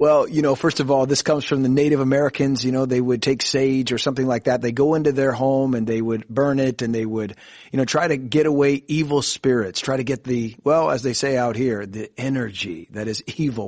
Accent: American